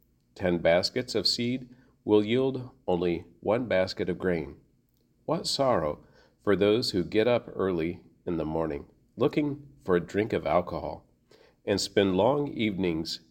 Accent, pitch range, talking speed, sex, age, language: American, 85-115 Hz, 145 wpm, male, 50-69, English